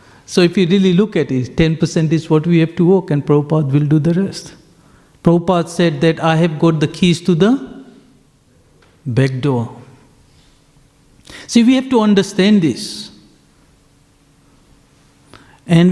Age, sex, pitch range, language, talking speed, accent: 60-79, male, 155-190 Hz, English, 145 wpm, Indian